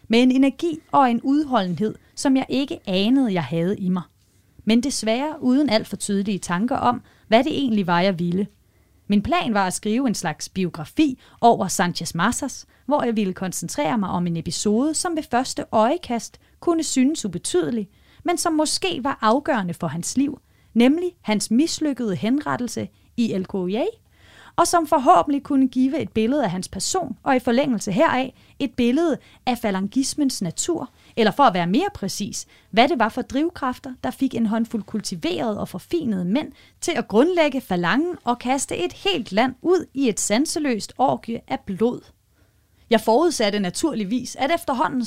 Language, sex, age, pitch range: Danish, female, 30-49, 200-285 Hz